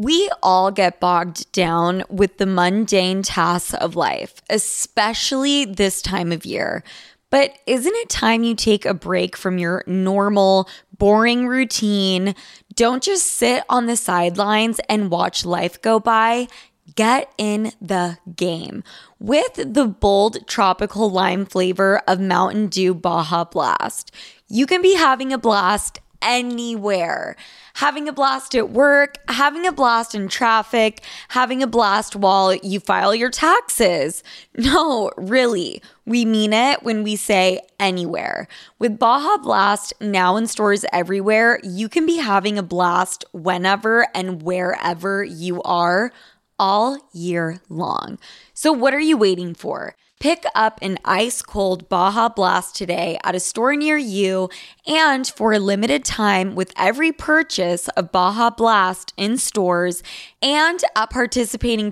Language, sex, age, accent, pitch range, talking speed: English, female, 20-39, American, 185-250 Hz, 140 wpm